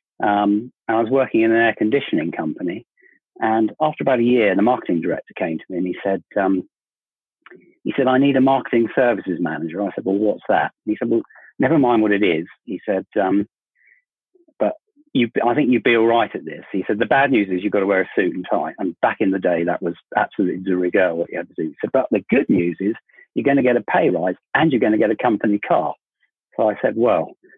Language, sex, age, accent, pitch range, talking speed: English, male, 40-59, British, 100-130 Hz, 250 wpm